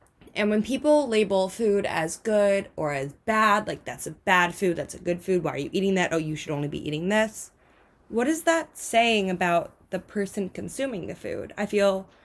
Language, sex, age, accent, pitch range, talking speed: English, female, 20-39, American, 175-215 Hz, 210 wpm